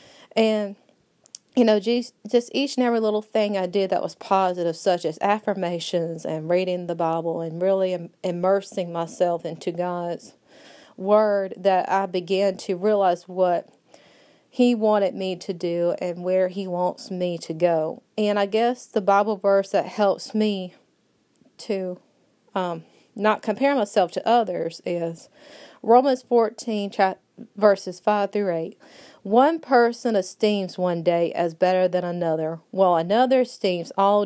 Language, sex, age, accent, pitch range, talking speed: English, female, 30-49, American, 175-215 Hz, 145 wpm